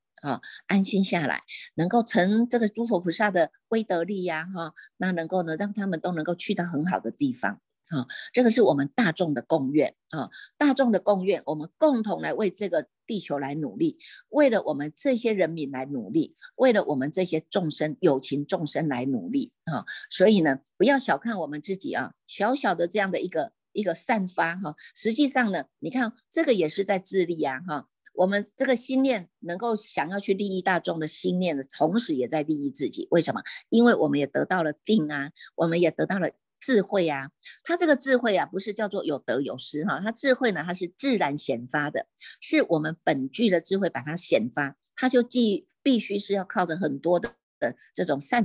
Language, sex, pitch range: Chinese, female, 165-235 Hz